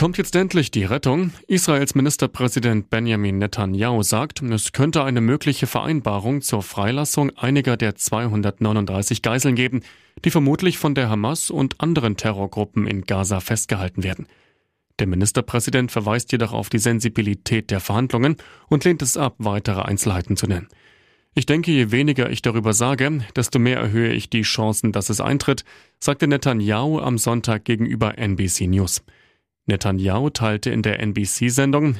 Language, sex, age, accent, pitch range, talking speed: German, male, 30-49, German, 105-140 Hz, 150 wpm